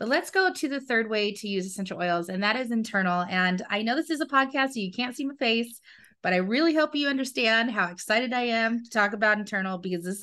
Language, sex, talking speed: English, female, 260 wpm